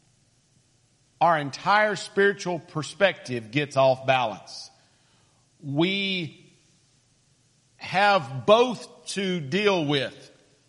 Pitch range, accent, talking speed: 140-200 Hz, American, 75 wpm